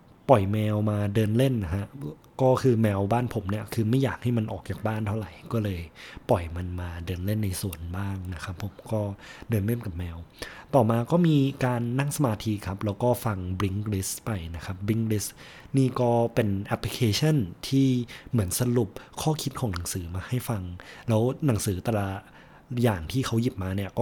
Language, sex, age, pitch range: Thai, male, 20-39, 95-125 Hz